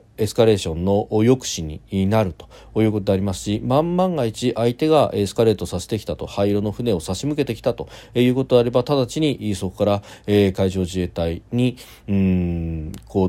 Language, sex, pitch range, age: Japanese, male, 90-115 Hz, 40-59